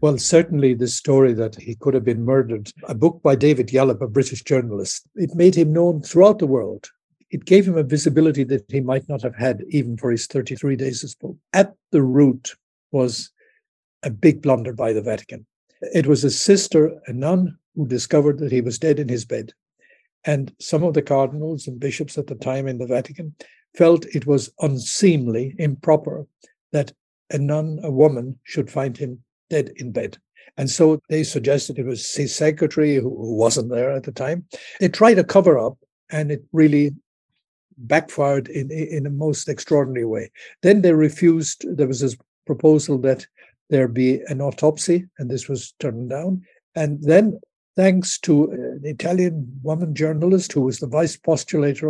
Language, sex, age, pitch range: English, male, 60-79, 135-160 Hz